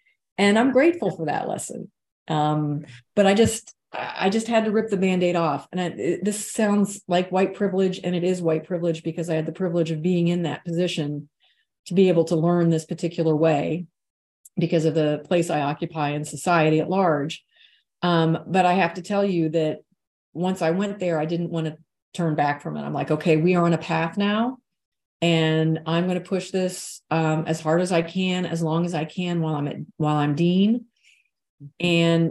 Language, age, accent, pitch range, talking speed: English, 40-59, American, 160-185 Hz, 200 wpm